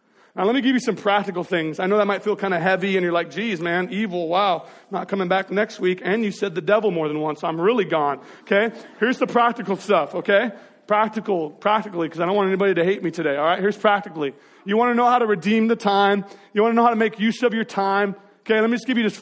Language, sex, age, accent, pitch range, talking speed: English, male, 40-59, American, 190-235 Hz, 275 wpm